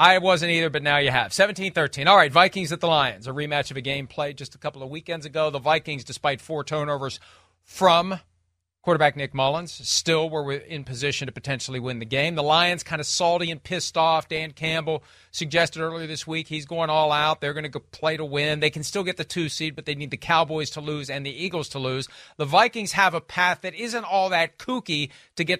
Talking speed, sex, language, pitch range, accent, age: 230 wpm, male, English, 145-180 Hz, American, 40-59